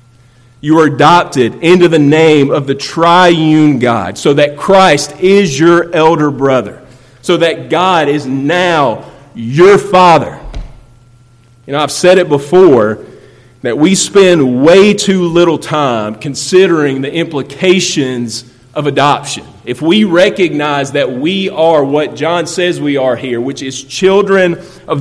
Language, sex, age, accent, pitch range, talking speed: English, male, 40-59, American, 125-165 Hz, 140 wpm